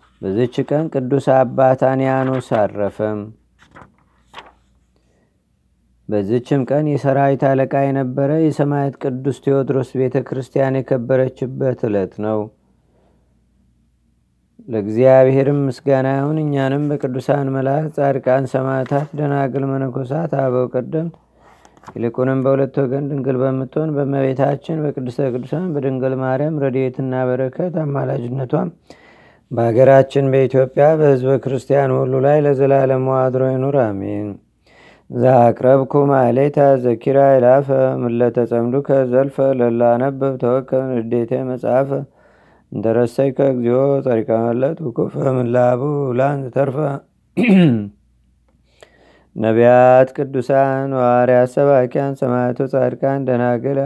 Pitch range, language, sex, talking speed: 125-140 Hz, Amharic, male, 85 wpm